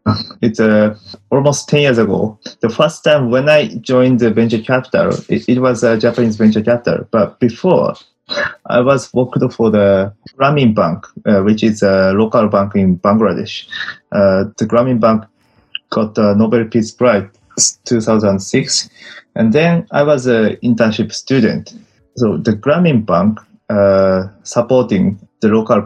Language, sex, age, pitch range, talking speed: English, male, 20-39, 105-130 Hz, 150 wpm